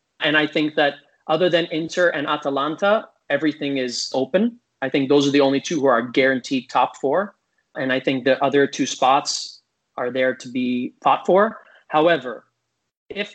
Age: 30-49